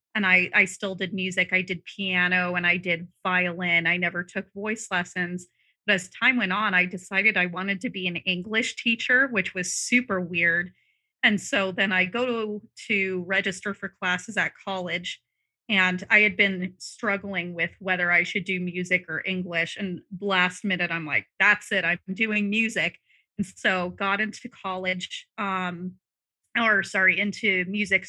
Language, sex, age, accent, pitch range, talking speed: English, female, 30-49, American, 180-215 Hz, 175 wpm